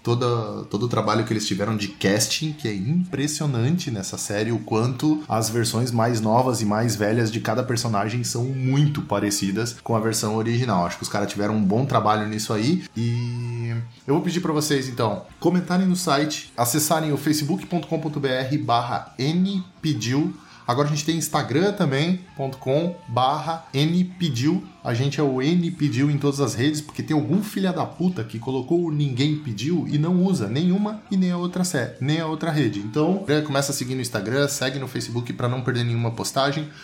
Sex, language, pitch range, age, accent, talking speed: male, Portuguese, 120-155 Hz, 20-39, Brazilian, 190 wpm